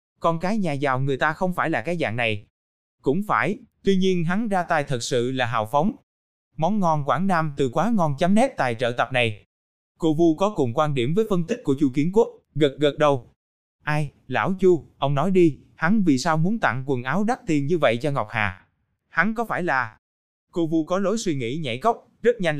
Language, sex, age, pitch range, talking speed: Vietnamese, male, 20-39, 130-180 Hz, 230 wpm